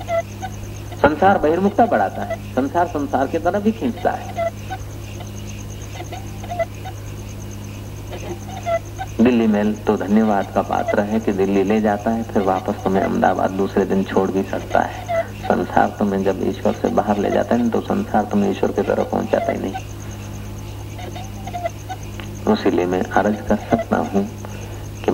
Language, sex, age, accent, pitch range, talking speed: Hindi, male, 50-69, native, 100-110 Hz, 130 wpm